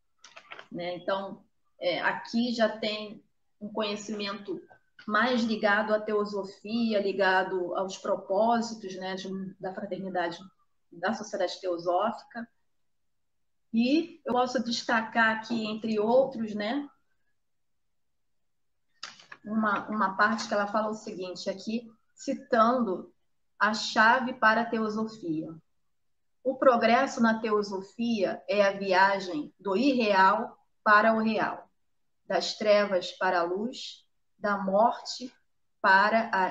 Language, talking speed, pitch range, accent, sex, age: Portuguese, 105 wpm, 190-230 Hz, Brazilian, female, 30-49